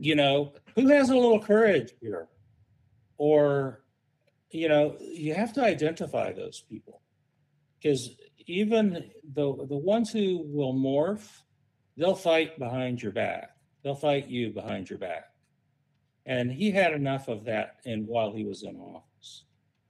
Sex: male